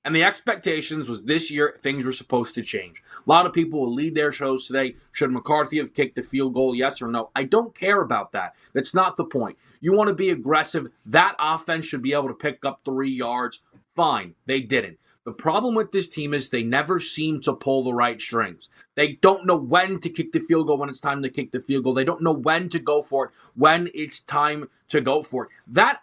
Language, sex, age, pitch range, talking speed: English, male, 30-49, 135-170 Hz, 240 wpm